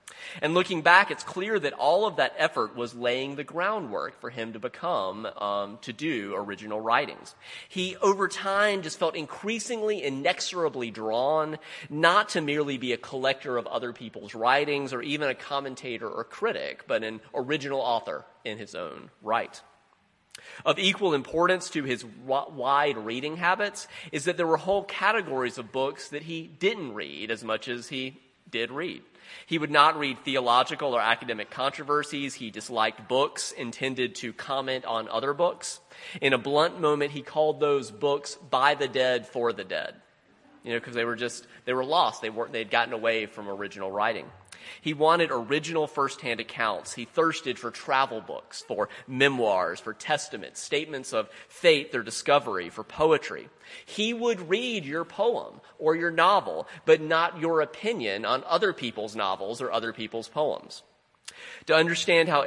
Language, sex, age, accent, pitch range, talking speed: English, male, 30-49, American, 120-160 Hz, 165 wpm